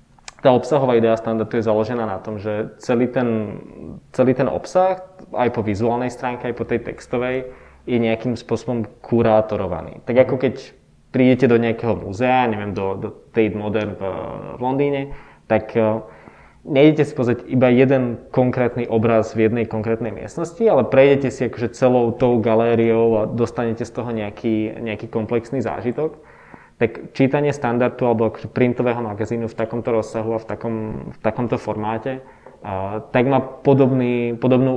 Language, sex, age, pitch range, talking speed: Czech, male, 20-39, 110-130 Hz, 145 wpm